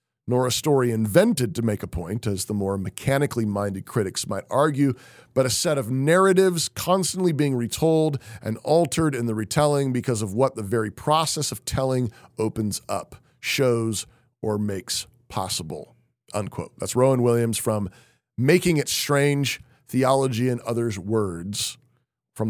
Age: 40-59